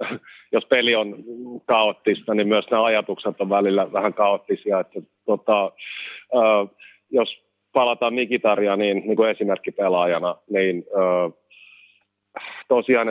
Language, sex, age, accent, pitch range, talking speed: Finnish, male, 30-49, native, 95-110 Hz, 105 wpm